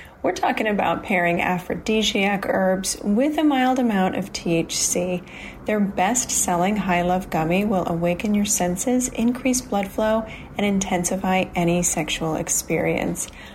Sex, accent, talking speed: female, American, 125 wpm